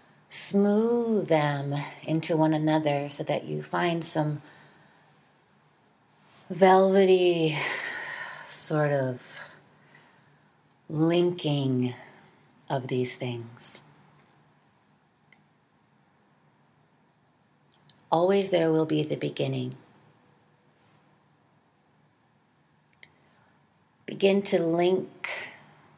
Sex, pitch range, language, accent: female, 130-170 Hz, English, American